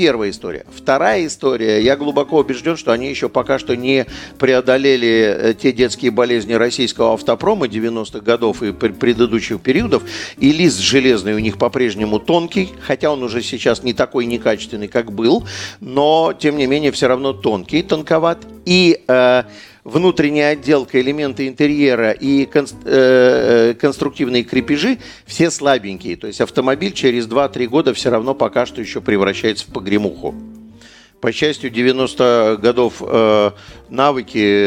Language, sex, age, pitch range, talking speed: Russian, male, 50-69, 115-145 Hz, 135 wpm